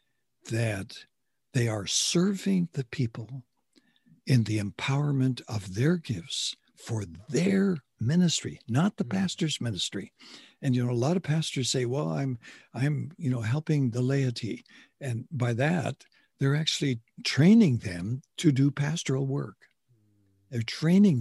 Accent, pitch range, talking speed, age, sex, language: American, 115-145 Hz, 135 wpm, 60-79, male, English